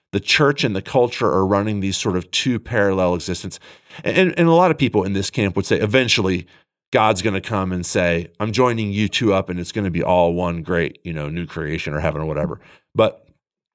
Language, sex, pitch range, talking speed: English, male, 85-100 Hz, 230 wpm